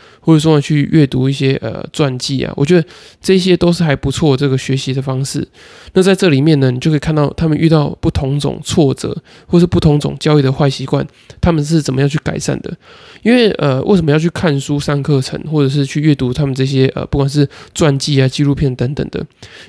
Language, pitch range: Chinese, 135-160 Hz